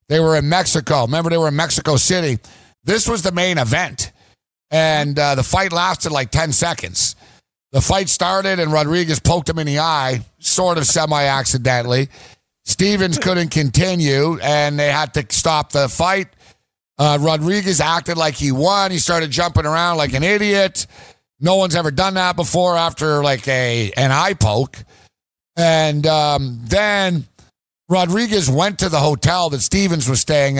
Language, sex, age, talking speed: English, male, 50-69, 160 wpm